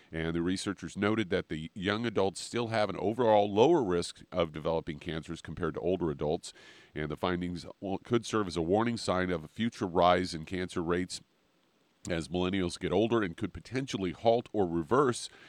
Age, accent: 40-59, American